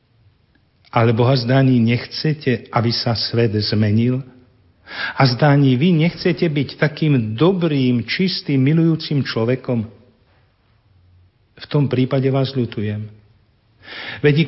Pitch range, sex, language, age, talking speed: 110-140 Hz, male, Slovak, 50-69, 100 wpm